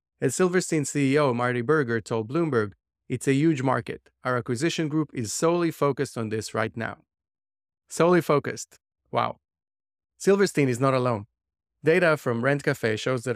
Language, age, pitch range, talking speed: English, 30-49, 115-145 Hz, 155 wpm